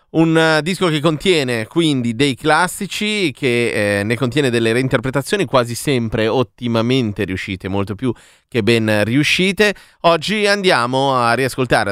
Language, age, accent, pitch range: Italian, 30-49, native, 95-135 Hz